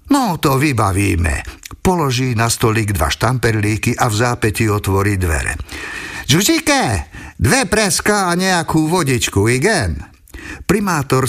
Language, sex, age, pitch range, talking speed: Slovak, male, 50-69, 100-135 Hz, 110 wpm